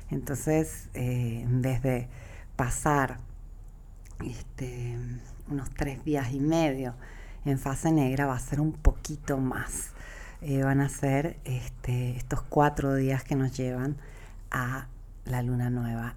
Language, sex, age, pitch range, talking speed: Spanish, female, 40-59, 125-150 Hz, 125 wpm